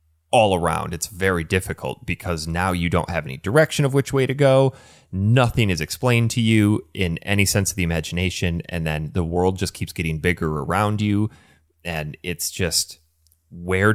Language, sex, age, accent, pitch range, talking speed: English, male, 30-49, American, 85-125 Hz, 180 wpm